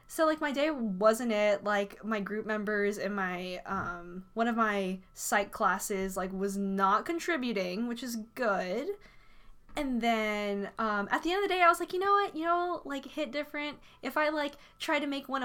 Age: 10-29